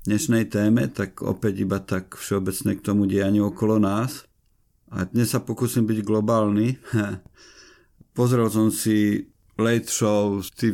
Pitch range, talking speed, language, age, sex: 100-110 Hz, 130 wpm, Slovak, 50-69, male